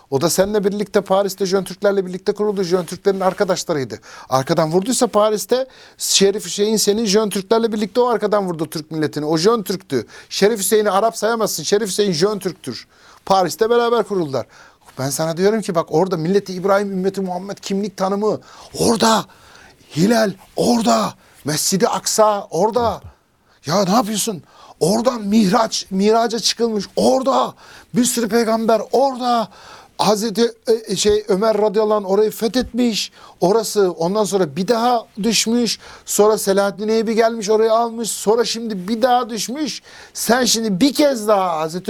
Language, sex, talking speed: Turkish, male, 145 wpm